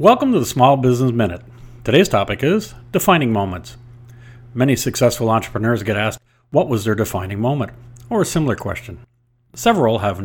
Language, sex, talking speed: English, male, 160 wpm